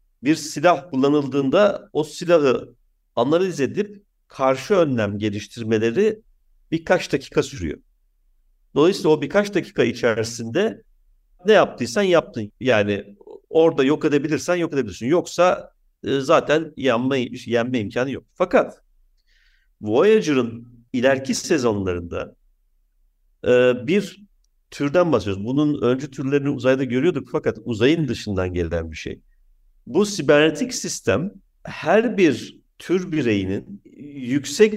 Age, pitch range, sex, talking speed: 60-79, 115-160 Hz, male, 100 wpm